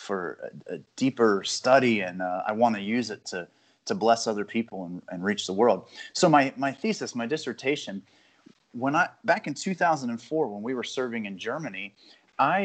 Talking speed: 190 wpm